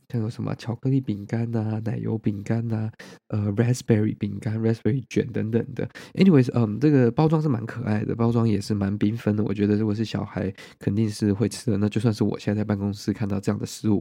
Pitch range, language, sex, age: 105-120 Hz, Chinese, male, 20-39